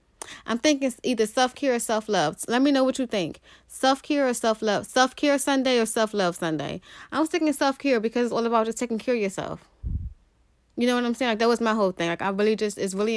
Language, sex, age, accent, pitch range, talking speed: English, female, 20-39, American, 190-225 Hz, 230 wpm